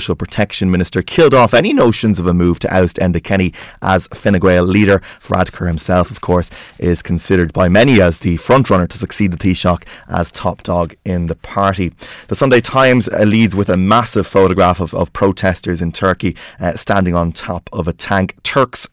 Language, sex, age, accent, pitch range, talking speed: English, male, 20-39, Irish, 90-105 Hz, 185 wpm